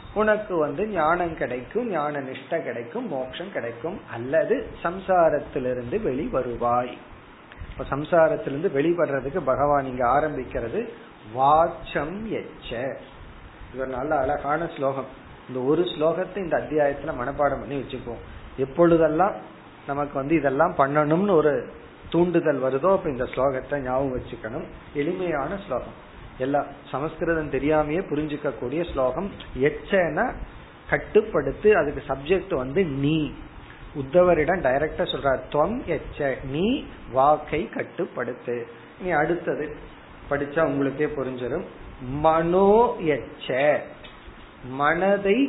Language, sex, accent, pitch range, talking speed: Tamil, male, native, 130-170 Hz, 90 wpm